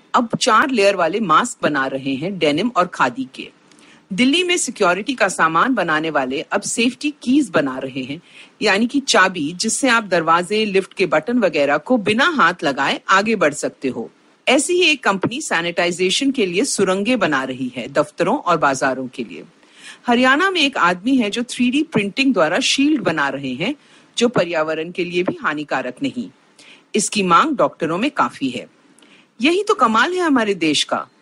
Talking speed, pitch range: 175 wpm, 170-260 Hz